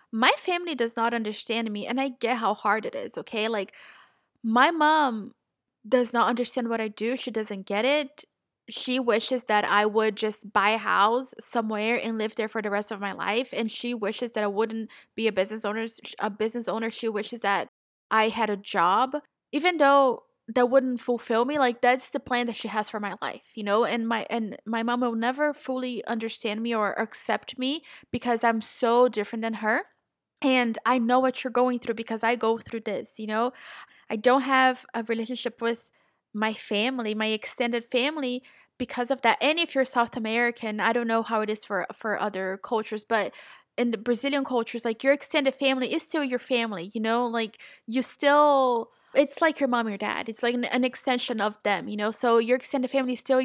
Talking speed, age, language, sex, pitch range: 205 wpm, 20-39, English, female, 220-255 Hz